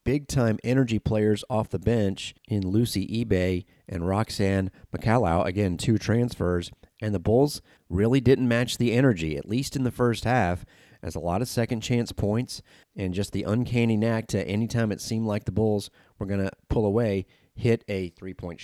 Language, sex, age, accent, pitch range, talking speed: English, male, 40-59, American, 90-115 Hz, 180 wpm